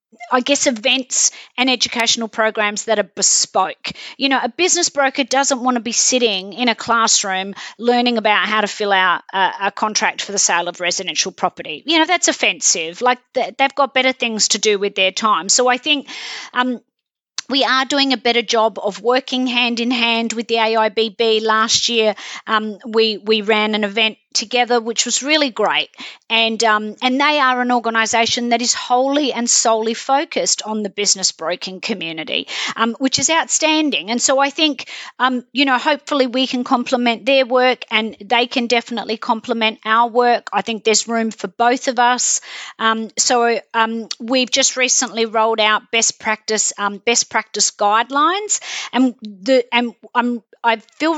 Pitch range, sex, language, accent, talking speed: 215-255 Hz, female, English, Australian, 180 wpm